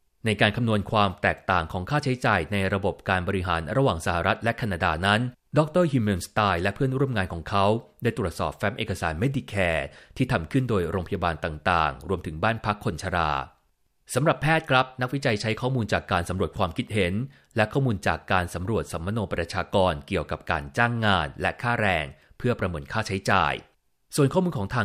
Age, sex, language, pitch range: 30-49, male, Thai, 90-115 Hz